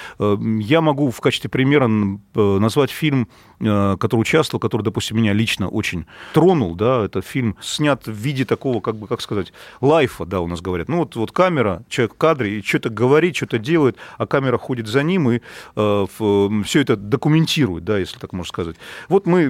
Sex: male